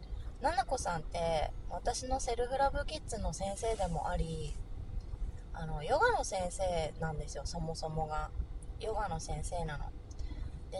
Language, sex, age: Japanese, female, 20-39